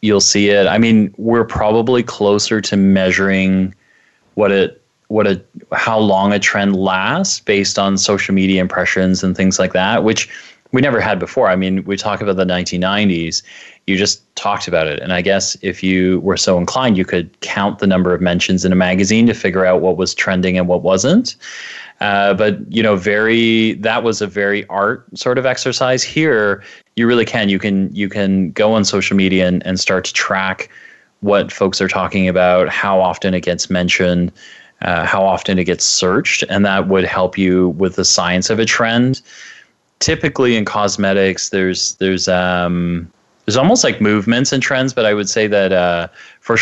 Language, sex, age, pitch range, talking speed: English, male, 20-39, 90-105 Hz, 190 wpm